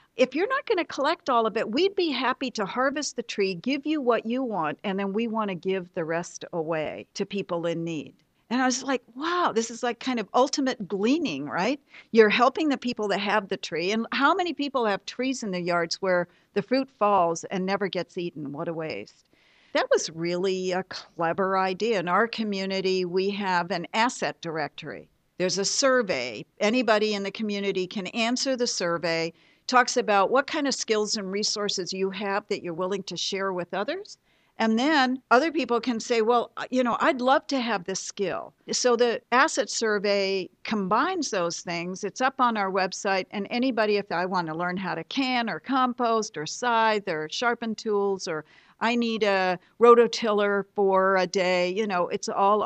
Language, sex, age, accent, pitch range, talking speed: English, female, 60-79, American, 185-245 Hz, 195 wpm